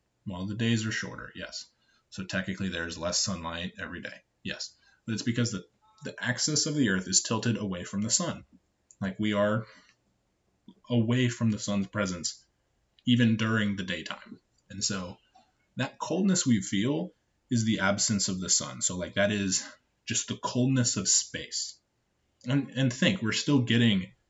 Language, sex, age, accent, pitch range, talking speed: English, male, 20-39, American, 95-120 Hz, 170 wpm